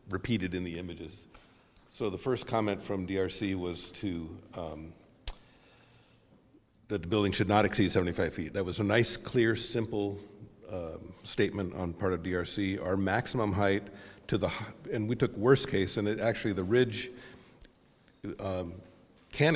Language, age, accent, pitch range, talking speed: English, 50-69, American, 90-105 Hz, 155 wpm